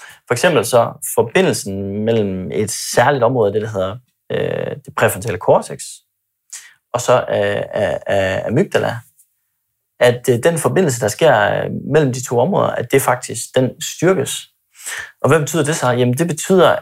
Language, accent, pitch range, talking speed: Danish, native, 110-140 Hz, 155 wpm